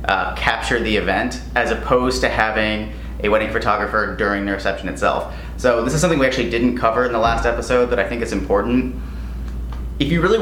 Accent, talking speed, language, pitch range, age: American, 200 wpm, English, 105-135 Hz, 30-49